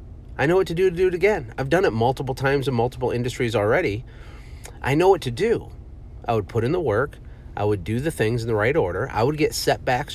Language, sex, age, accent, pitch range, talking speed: English, male, 30-49, American, 105-140 Hz, 250 wpm